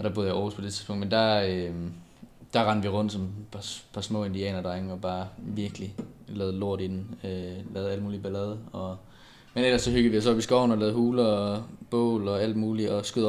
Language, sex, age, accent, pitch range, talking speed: Danish, male, 20-39, native, 100-120 Hz, 230 wpm